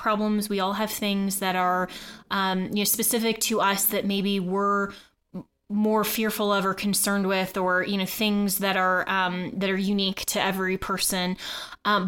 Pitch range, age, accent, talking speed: 195-215 Hz, 20-39, American, 180 wpm